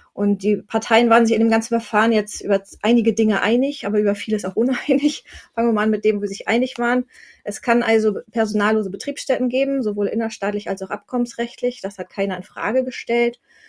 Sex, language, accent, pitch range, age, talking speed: female, German, German, 200-235 Hz, 30-49, 205 wpm